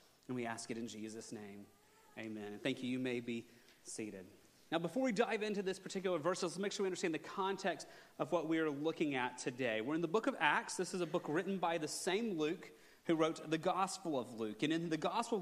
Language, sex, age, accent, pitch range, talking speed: English, male, 30-49, American, 145-190 Hz, 240 wpm